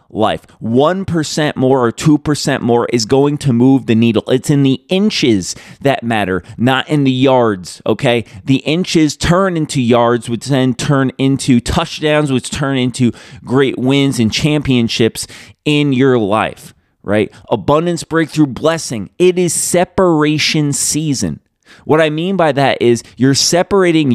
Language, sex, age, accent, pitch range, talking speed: English, male, 30-49, American, 125-160 Hz, 145 wpm